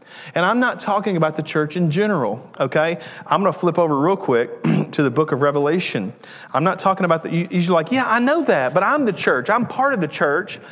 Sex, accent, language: male, American, English